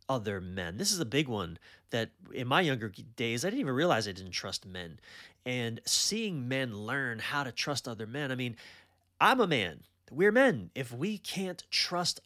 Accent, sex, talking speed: American, male, 195 wpm